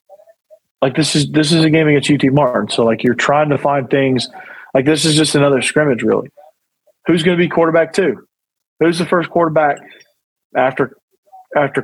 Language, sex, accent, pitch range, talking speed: English, male, American, 130-185 Hz, 180 wpm